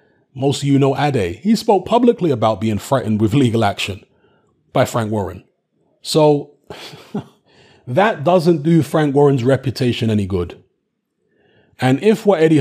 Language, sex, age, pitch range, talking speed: English, male, 30-49, 120-150 Hz, 145 wpm